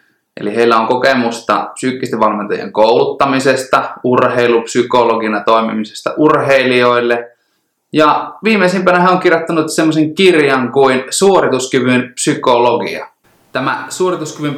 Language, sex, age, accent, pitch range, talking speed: Finnish, male, 20-39, native, 120-155 Hz, 90 wpm